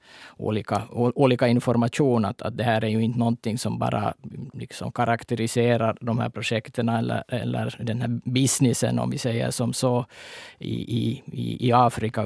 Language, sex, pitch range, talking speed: Swedish, male, 110-120 Hz, 155 wpm